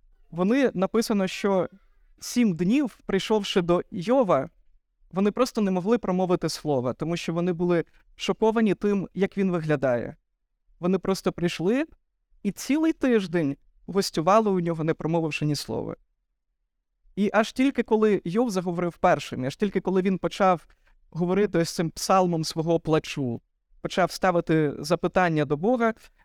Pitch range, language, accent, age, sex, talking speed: 160-205 Hz, Ukrainian, native, 20-39, male, 135 wpm